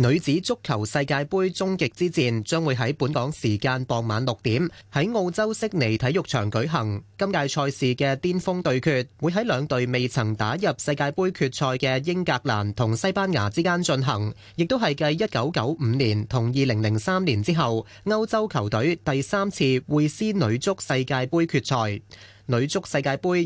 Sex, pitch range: male, 120-175 Hz